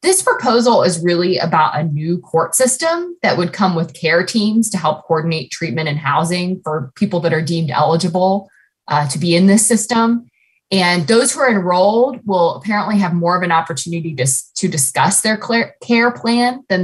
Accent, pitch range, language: American, 160-195 Hz, English